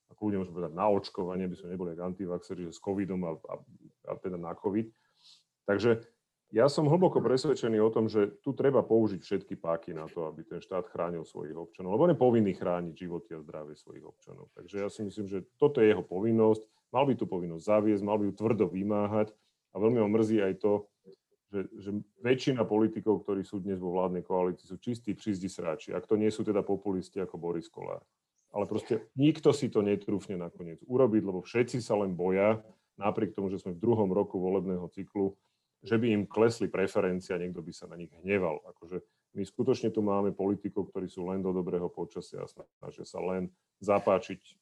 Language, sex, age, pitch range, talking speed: Slovak, male, 40-59, 90-110 Hz, 195 wpm